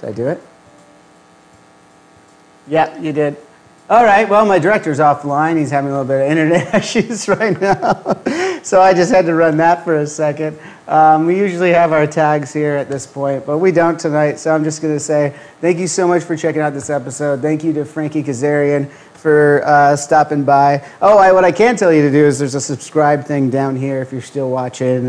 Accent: American